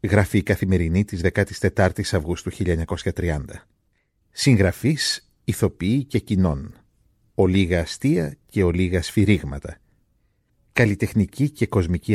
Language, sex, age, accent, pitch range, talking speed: Greek, male, 50-69, native, 90-115 Hz, 100 wpm